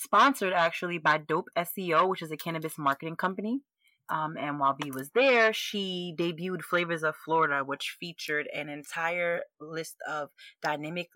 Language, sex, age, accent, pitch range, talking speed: English, female, 30-49, American, 145-175 Hz, 155 wpm